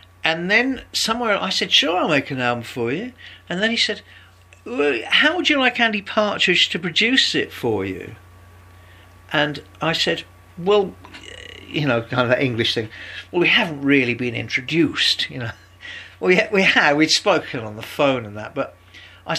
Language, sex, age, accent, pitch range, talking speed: English, male, 50-69, British, 105-160 Hz, 185 wpm